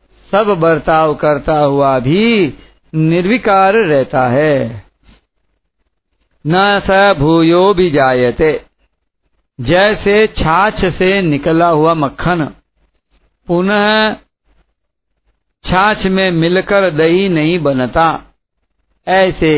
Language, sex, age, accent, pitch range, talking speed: Hindi, male, 50-69, native, 140-190 Hz, 85 wpm